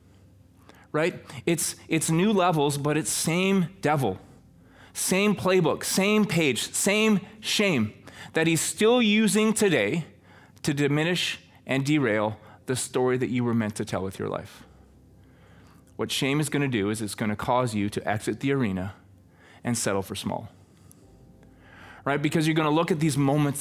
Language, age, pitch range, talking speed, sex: English, 20-39, 135-195 Hz, 165 wpm, male